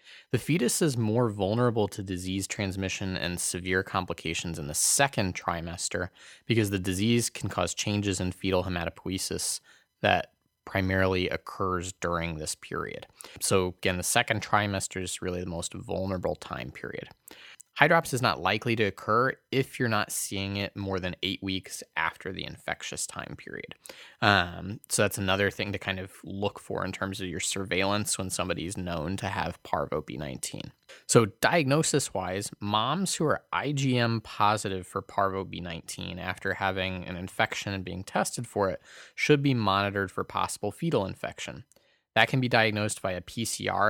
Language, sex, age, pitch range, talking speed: English, male, 20-39, 95-115 Hz, 160 wpm